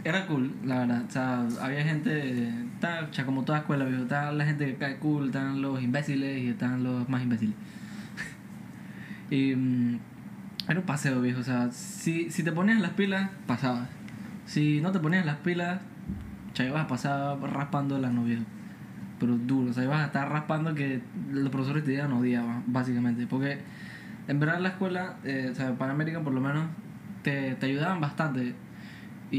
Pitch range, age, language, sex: 130-160 Hz, 10-29, Spanish, male